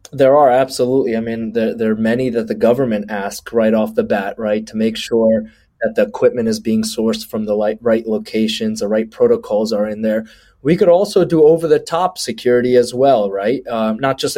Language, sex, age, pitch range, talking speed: English, male, 20-39, 110-150 Hz, 215 wpm